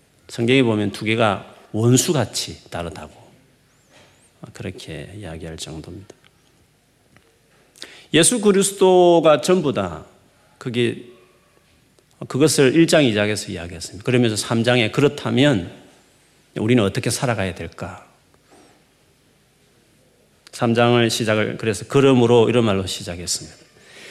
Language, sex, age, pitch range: Korean, male, 40-59, 105-145 Hz